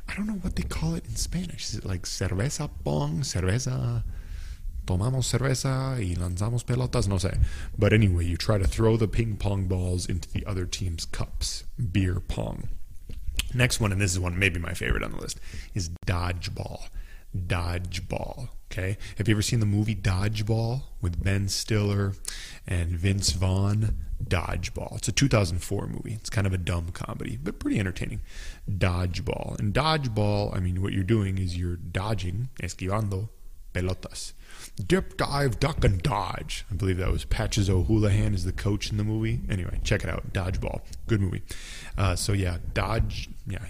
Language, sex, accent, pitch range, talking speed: English, male, American, 90-115 Hz, 170 wpm